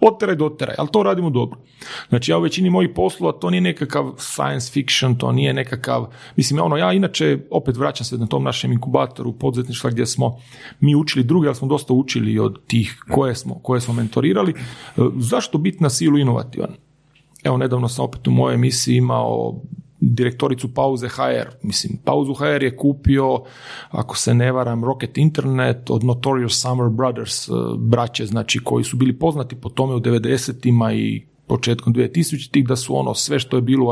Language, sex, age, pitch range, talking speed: Croatian, male, 40-59, 120-145 Hz, 180 wpm